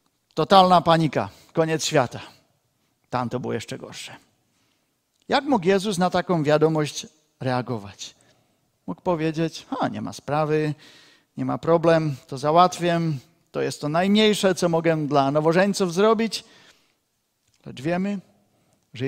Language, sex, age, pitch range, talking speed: Czech, male, 50-69, 135-175 Hz, 125 wpm